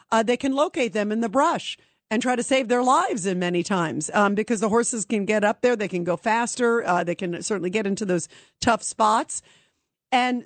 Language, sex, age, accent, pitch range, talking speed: English, female, 50-69, American, 205-270 Hz, 225 wpm